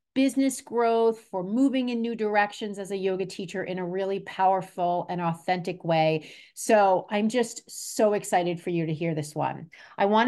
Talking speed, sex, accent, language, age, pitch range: 180 wpm, female, American, English, 40-59, 165-215 Hz